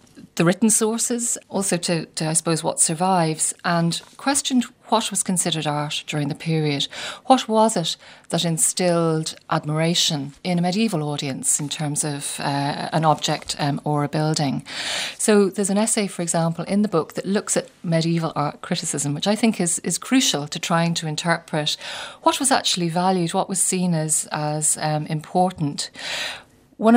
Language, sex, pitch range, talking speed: English, female, 155-190 Hz, 170 wpm